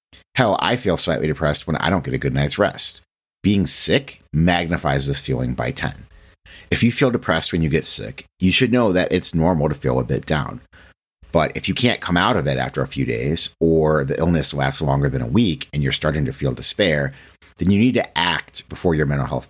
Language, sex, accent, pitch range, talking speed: English, male, American, 70-90 Hz, 230 wpm